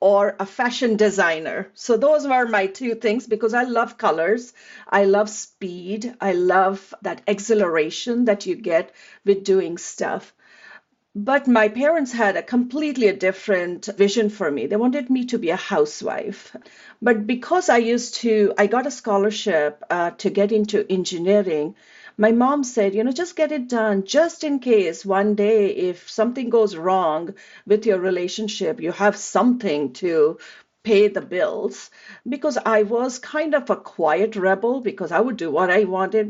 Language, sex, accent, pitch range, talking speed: English, female, Indian, 190-240 Hz, 165 wpm